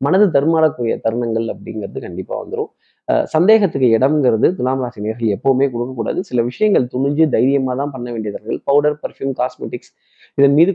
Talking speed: 145 wpm